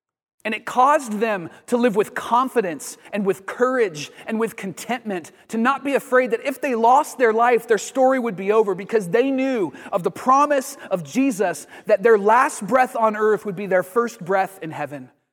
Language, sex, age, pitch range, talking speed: English, male, 30-49, 155-230 Hz, 195 wpm